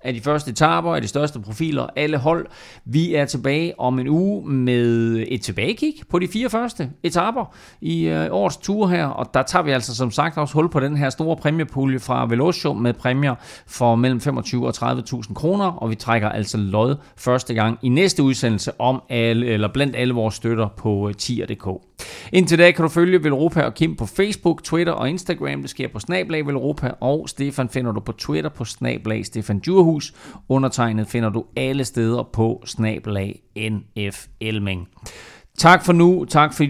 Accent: native